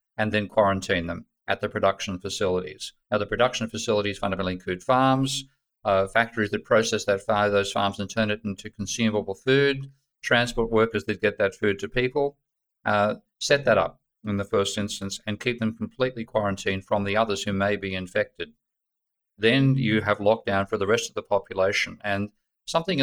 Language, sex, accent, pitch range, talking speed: English, male, Australian, 100-115 Hz, 180 wpm